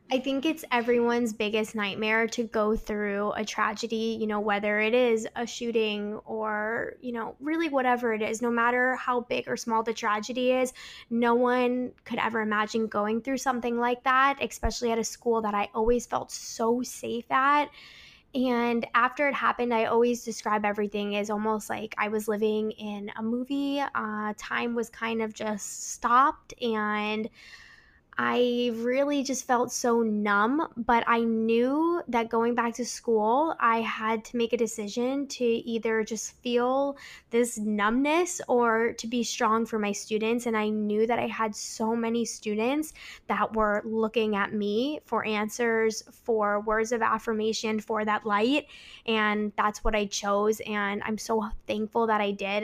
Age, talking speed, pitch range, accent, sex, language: 10-29, 170 wpm, 215-245 Hz, American, female, English